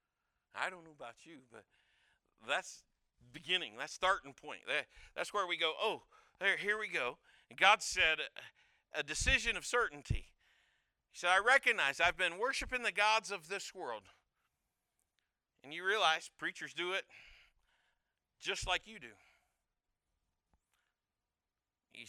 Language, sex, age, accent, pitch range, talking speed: English, male, 50-69, American, 135-195 Hz, 135 wpm